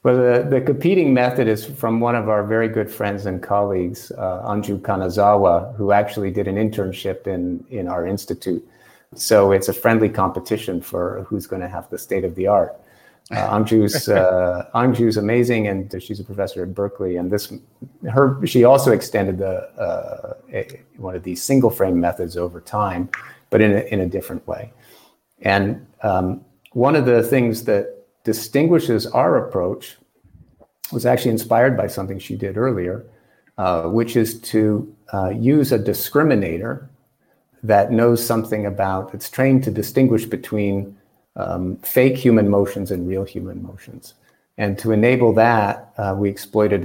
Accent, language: American, English